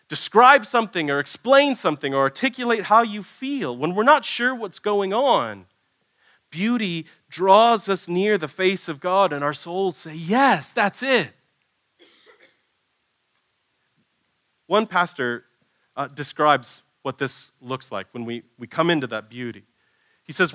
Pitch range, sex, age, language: 140-210 Hz, male, 30-49, English